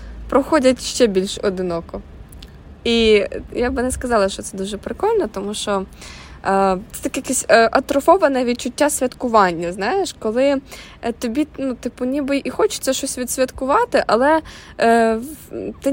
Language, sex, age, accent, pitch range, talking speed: Ukrainian, female, 20-39, native, 195-250 Hz, 140 wpm